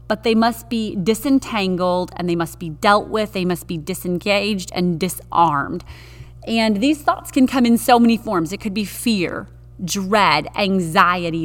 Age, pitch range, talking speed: 30-49, 175-225 Hz, 170 wpm